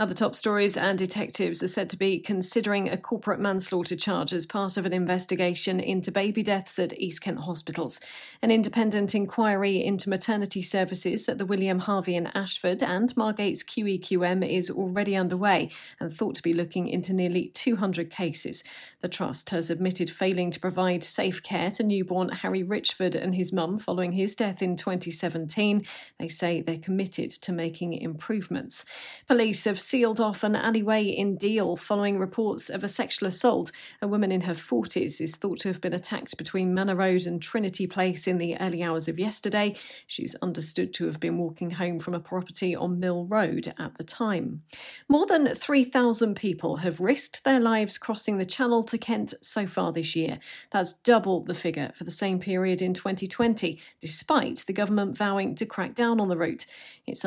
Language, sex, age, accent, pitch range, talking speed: English, female, 40-59, British, 180-210 Hz, 180 wpm